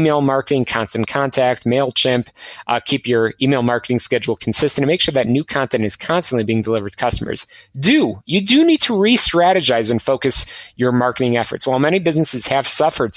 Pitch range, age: 120-155 Hz, 30-49